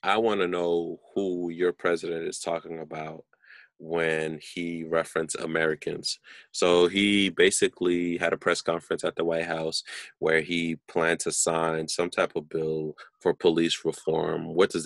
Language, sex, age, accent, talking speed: English, male, 30-49, American, 160 wpm